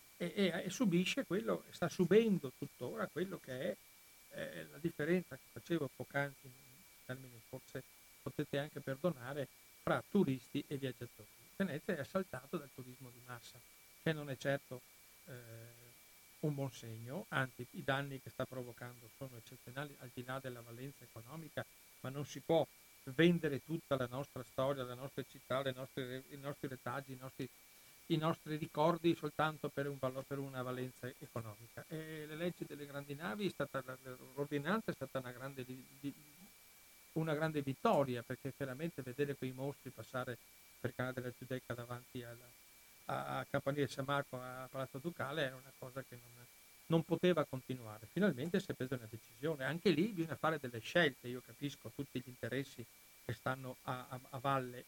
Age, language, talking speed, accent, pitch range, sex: 60-79, Italian, 165 wpm, native, 125-150 Hz, male